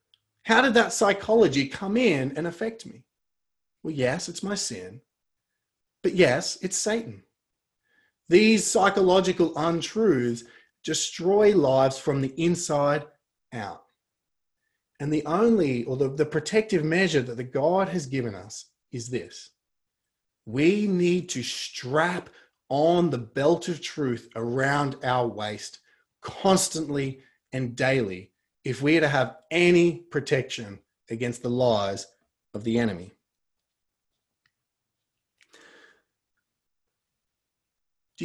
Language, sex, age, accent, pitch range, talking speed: English, male, 30-49, Australian, 120-180 Hz, 115 wpm